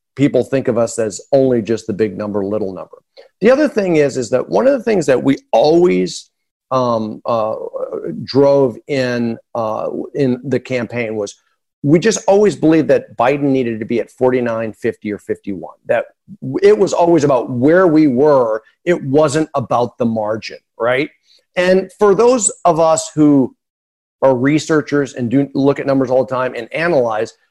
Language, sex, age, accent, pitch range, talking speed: English, male, 50-69, American, 120-155 Hz, 175 wpm